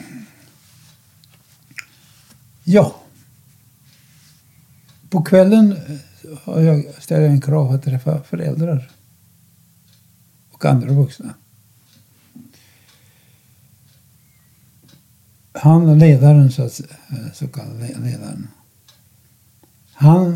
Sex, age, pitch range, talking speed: male, 60-79, 125-145 Hz, 60 wpm